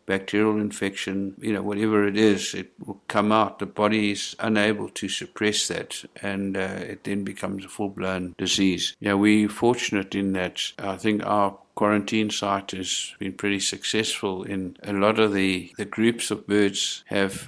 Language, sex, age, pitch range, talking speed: English, male, 60-79, 100-110 Hz, 180 wpm